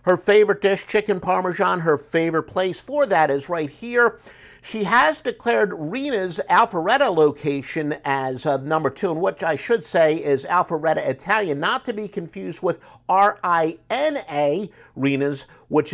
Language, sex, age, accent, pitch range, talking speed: English, male, 50-69, American, 145-200 Hz, 145 wpm